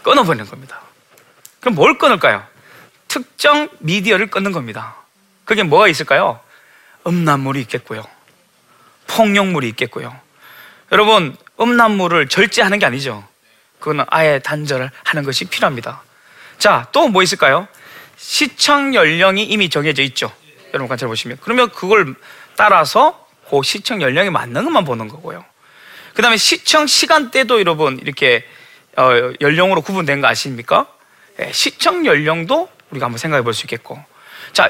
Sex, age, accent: male, 20-39, native